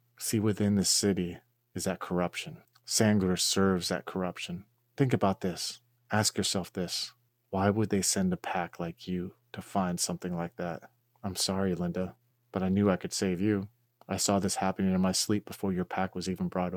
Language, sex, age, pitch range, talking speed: English, male, 30-49, 95-115 Hz, 190 wpm